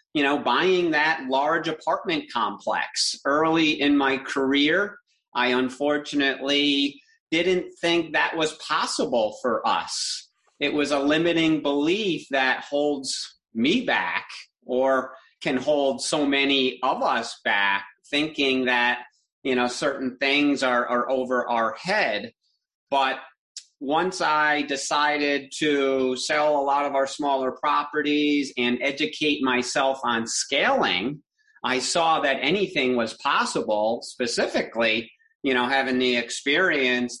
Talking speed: 125 wpm